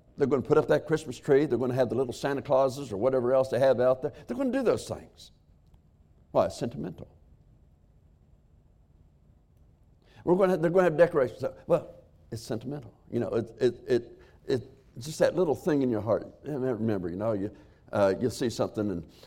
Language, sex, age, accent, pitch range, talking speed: English, male, 60-79, American, 80-130 Hz, 215 wpm